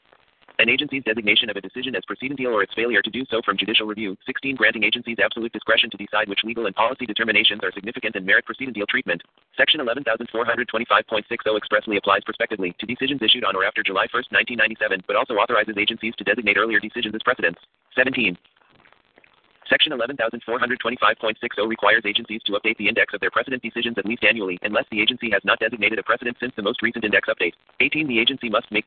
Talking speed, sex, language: 195 wpm, male, English